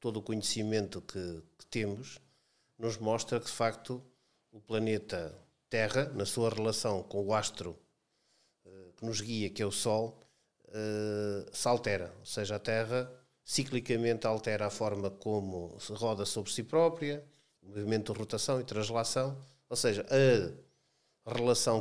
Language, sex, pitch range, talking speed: Portuguese, male, 100-120 Hz, 145 wpm